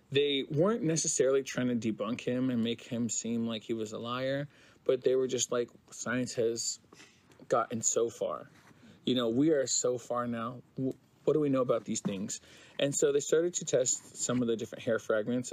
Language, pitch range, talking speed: English, 120-165 Hz, 200 wpm